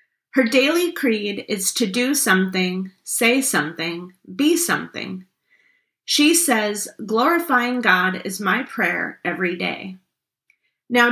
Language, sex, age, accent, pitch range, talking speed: English, female, 30-49, American, 195-250 Hz, 115 wpm